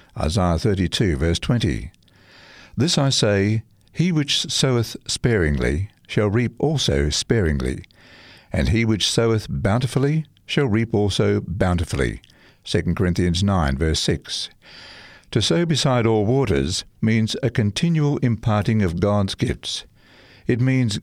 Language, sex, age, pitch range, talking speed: English, male, 60-79, 95-125 Hz, 125 wpm